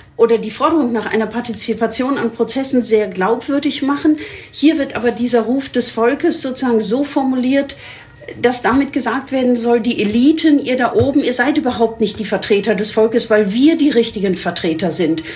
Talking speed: 175 wpm